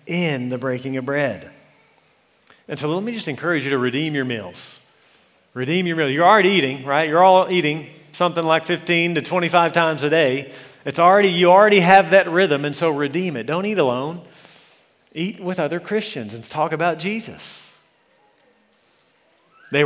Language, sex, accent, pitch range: English, male, American, 140-185 Hz